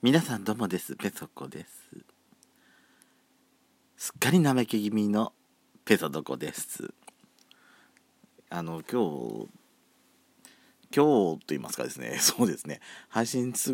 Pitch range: 85-125 Hz